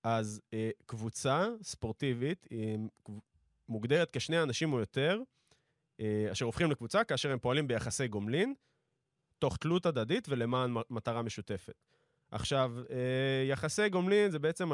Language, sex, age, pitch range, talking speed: Hebrew, male, 20-39, 110-150 Hz, 115 wpm